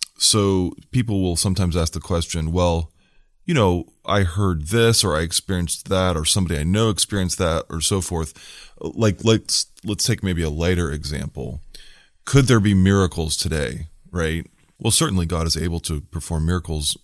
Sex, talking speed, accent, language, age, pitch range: male, 175 wpm, American, English, 20-39, 80-95 Hz